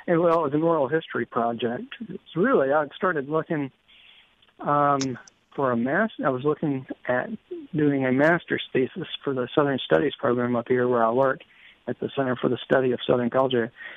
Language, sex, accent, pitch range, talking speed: English, male, American, 125-155 Hz, 190 wpm